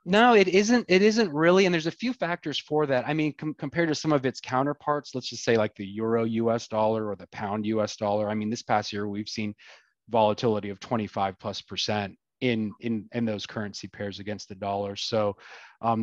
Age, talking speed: 30-49, 215 wpm